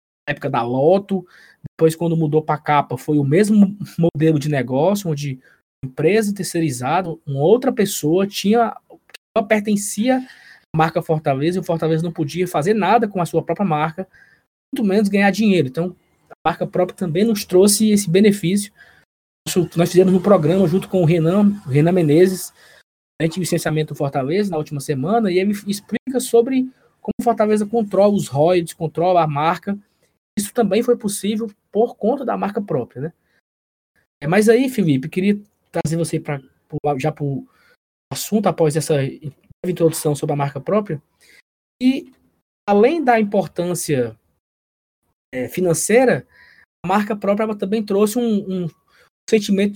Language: Portuguese